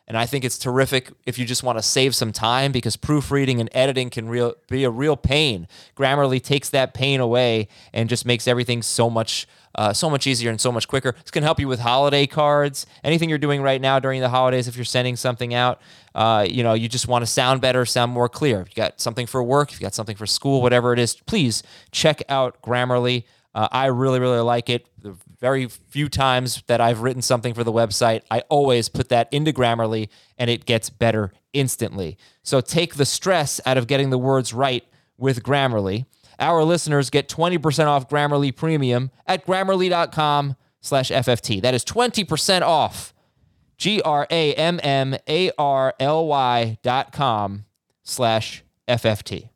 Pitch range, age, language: 120-140 Hz, 20-39, English